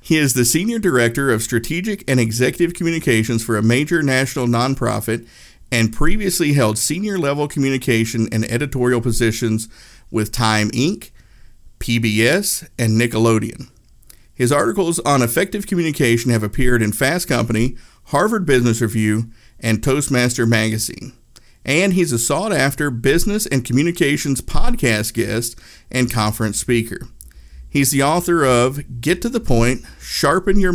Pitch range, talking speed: 115-145 Hz, 130 wpm